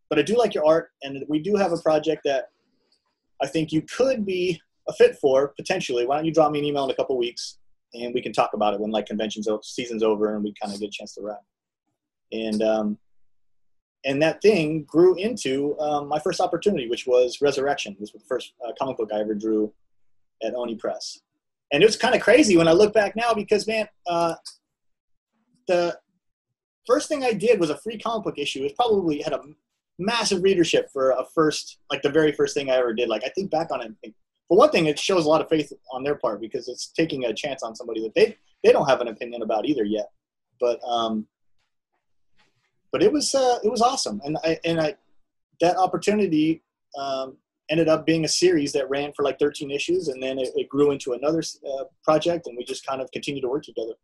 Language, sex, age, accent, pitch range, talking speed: English, male, 30-49, American, 130-190 Hz, 225 wpm